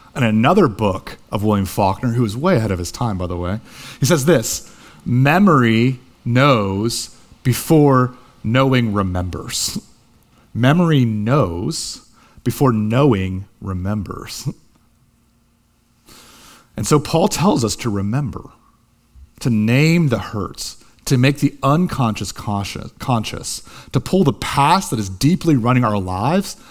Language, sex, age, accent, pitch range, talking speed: English, male, 40-59, American, 105-140 Hz, 125 wpm